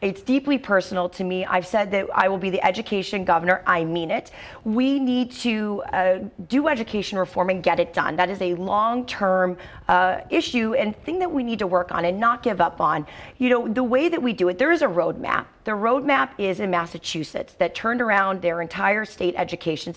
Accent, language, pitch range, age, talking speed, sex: American, English, 180-245 Hz, 30-49, 210 wpm, female